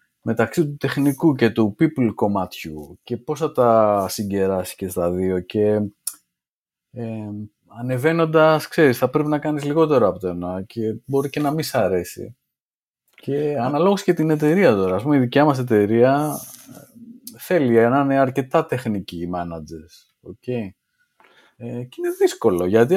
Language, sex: Greek, male